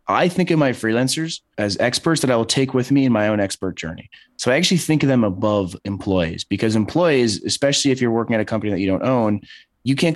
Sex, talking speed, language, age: male, 240 wpm, English, 20-39